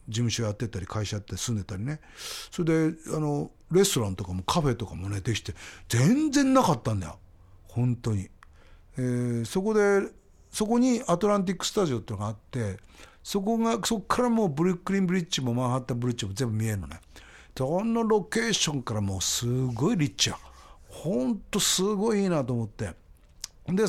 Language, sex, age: Japanese, male, 50-69